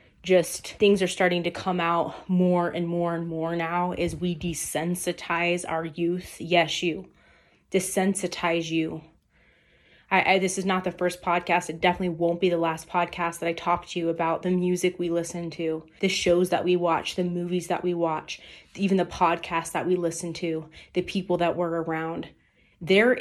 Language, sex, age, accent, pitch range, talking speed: English, female, 20-39, American, 165-180 Hz, 185 wpm